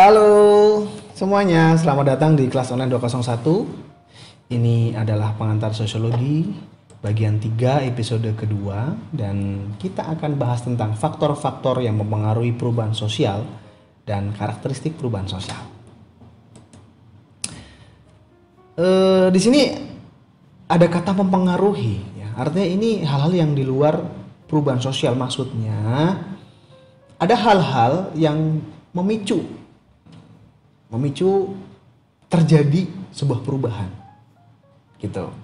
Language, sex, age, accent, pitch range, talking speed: Indonesian, male, 30-49, native, 115-165 Hz, 90 wpm